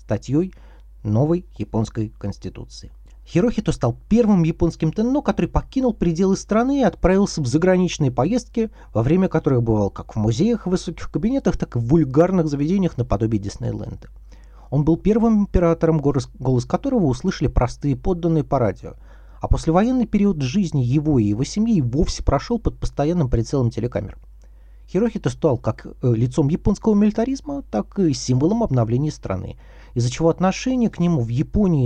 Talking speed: 145 wpm